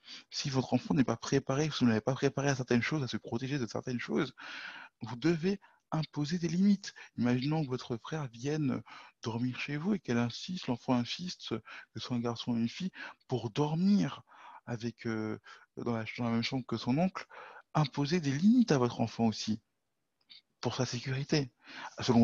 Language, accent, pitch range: French, French, 120-155 Hz